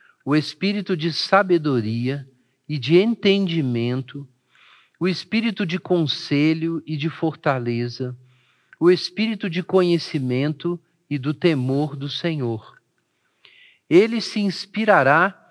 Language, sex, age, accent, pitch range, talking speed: Portuguese, male, 50-69, Brazilian, 145-180 Hz, 100 wpm